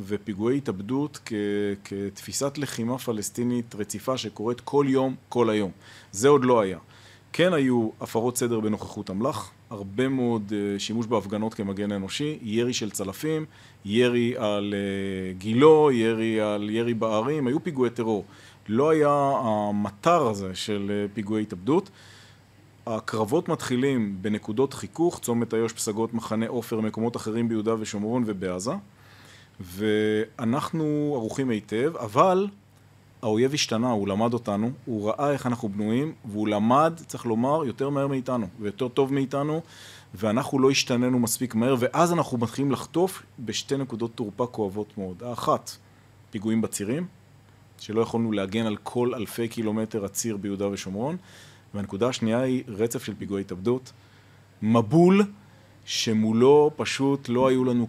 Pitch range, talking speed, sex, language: 105-130 Hz, 130 wpm, male, Hebrew